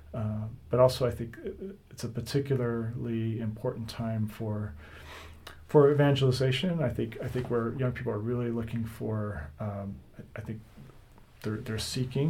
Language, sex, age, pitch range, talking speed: English, male, 40-59, 105-120 Hz, 150 wpm